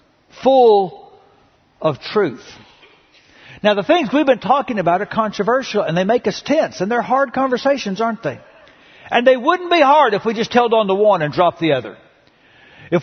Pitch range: 190-285 Hz